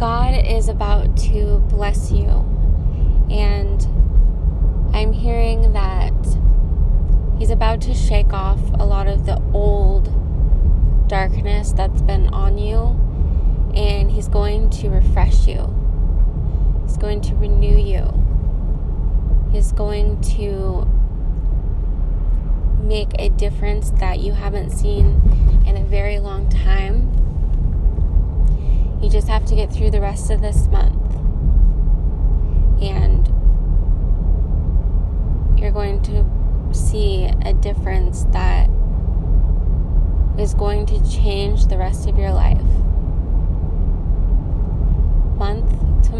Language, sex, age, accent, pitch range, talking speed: English, female, 20-39, American, 75-80 Hz, 100 wpm